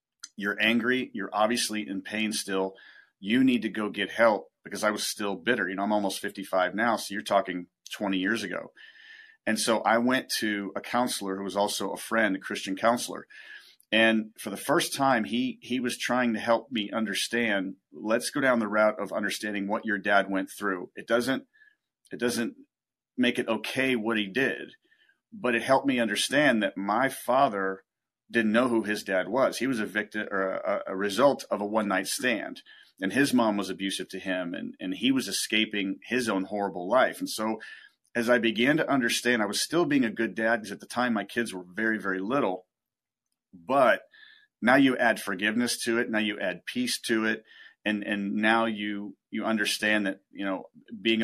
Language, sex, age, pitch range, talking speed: English, male, 40-59, 100-125 Hz, 200 wpm